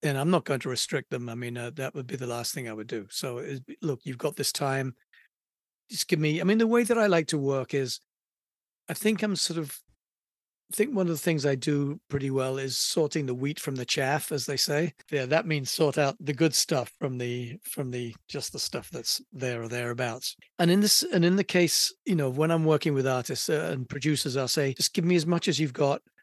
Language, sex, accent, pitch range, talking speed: English, male, British, 130-160 Hz, 245 wpm